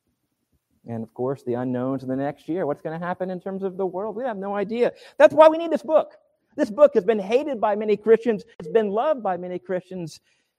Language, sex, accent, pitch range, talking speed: English, male, American, 125-215 Hz, 240 wpm